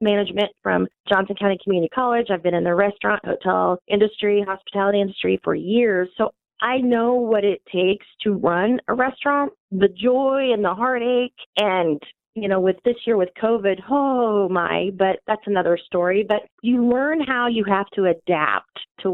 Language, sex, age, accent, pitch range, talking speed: English, female, 30-49, American, 185-225 Hz, 170 wpm